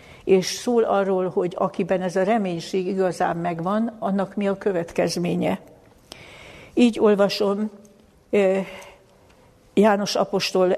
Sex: female